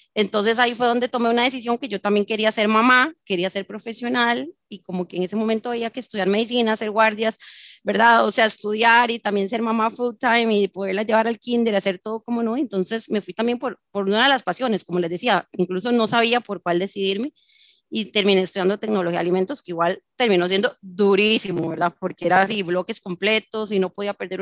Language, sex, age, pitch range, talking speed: Spanish, female, 30-49, 195-235 Hz, 215 wpm